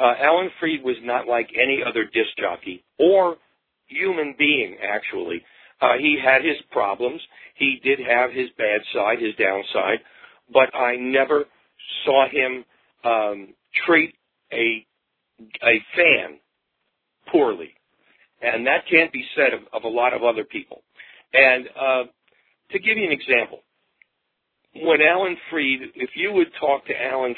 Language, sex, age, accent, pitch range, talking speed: English, male, 50-69, American, 125-155 Hz, 145 wpm